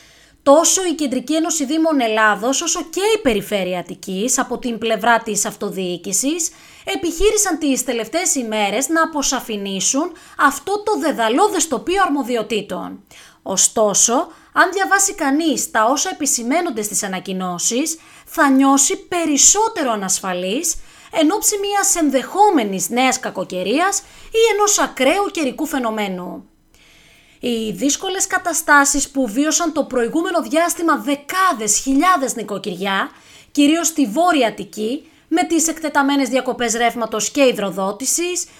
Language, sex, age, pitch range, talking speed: Greek, female, 20-39, 220-340 Hz, 110 wpm